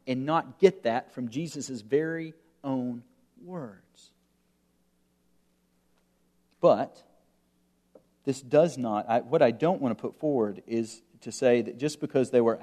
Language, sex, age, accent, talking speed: English, male, 40-59, American, 140 wpm